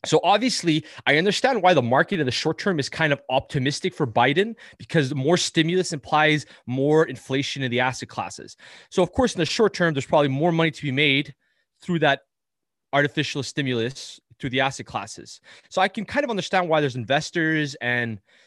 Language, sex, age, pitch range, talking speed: English, male, 20-39, 130-165 Hz, 190 wpm